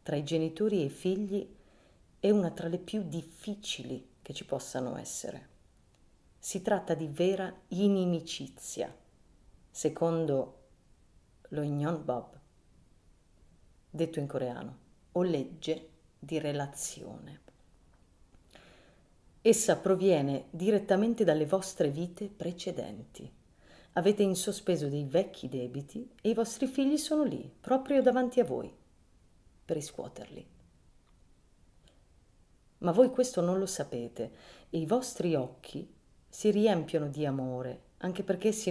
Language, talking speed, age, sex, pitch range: Italian, 115 wpm, 40-59, female, 140-195 Hz